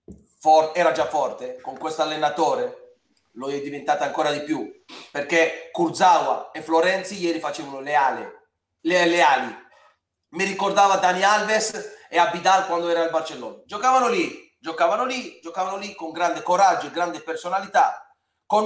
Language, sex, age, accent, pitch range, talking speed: Italian, male, 30-49, native, 150-185 Hz, 150 wpm